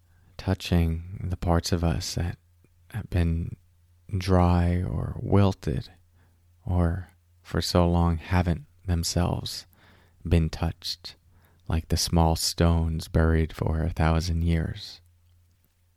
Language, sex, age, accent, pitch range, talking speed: English, male, 30-49, American, 85-100 Hz, 105 wpm